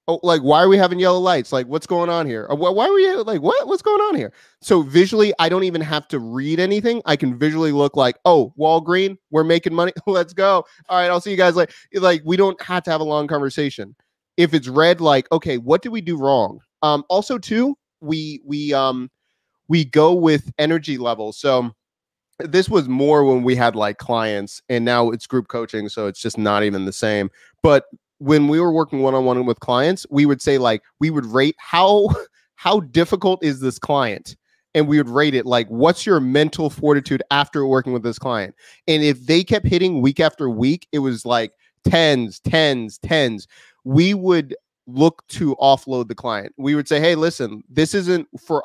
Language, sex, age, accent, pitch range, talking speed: English, male, 30-49, American, 130-175 Hz, 205 wpm